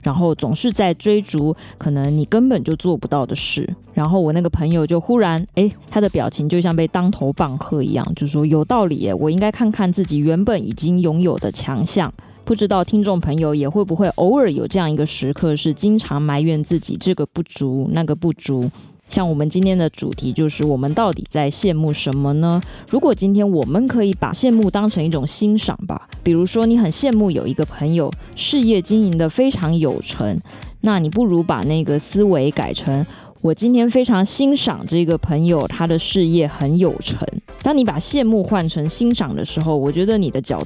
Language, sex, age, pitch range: Chinese, female, 20-39, 150-200 Hz